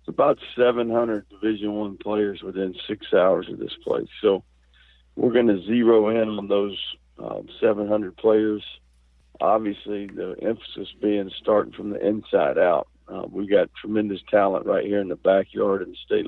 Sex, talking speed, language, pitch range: male, 165 wpm, English, 80-105 Hz